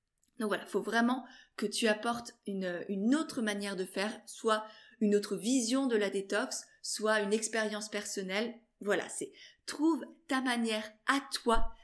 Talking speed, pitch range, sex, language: 160 wpm, 210-250 Hz, female, French